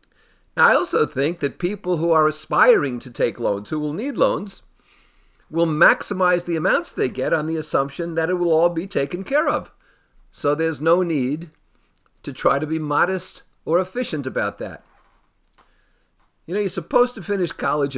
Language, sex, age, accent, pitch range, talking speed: English, male, 50-69, American, 130-170 Hz, 175 wpm